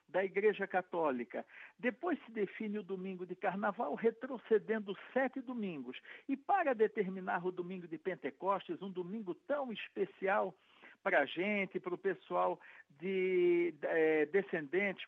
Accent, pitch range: Brazilian, 185-240 Hz